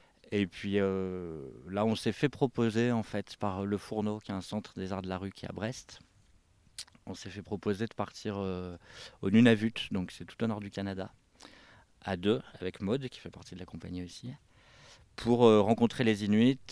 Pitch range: 95-110 Hz